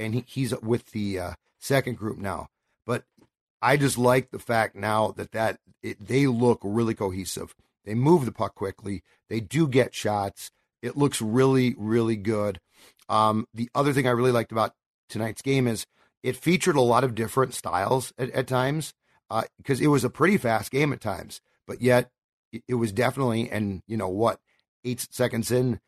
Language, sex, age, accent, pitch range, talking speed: English, male, 40-59, American, 110-130 Hz, 180 wpm